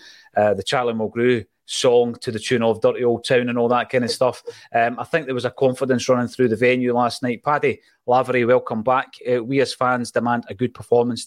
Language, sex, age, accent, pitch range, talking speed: English, male, 30-49, British, 120-150 Hz, 230 wpm